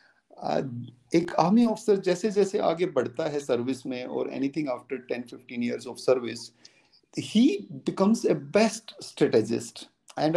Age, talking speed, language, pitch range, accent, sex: 50-69, 145 wpm, Hindi, 155-215 Hz, native, male